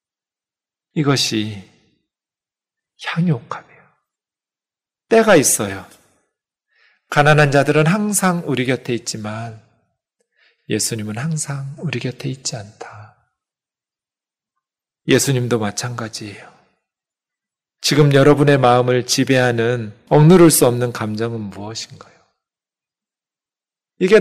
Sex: male